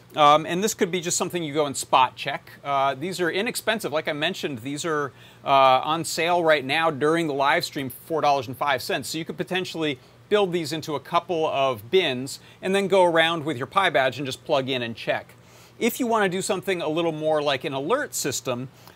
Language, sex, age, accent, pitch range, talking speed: English, male, 40-59, American, 130-170 Hz, 220 wpm